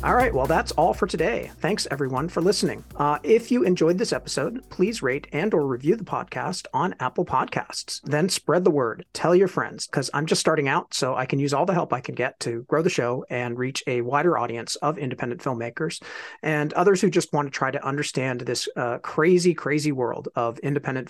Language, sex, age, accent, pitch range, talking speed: English, male, 40-59, American, 130-175 Hz, 220 wpm